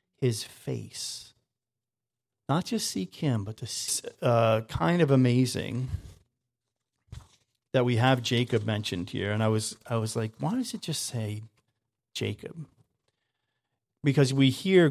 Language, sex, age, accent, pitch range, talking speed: English, male, 40-59, American, 115-140 Hz, 135 wpm